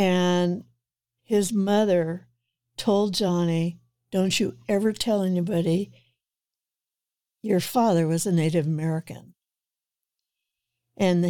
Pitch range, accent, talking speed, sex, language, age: 170-215 Hz, American, 90 wpm, female, English, 60-79